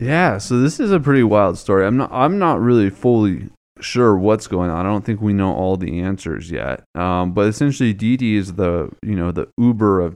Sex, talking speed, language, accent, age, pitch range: male, 225 wpm, English, American, 20-39, 90-105 Hz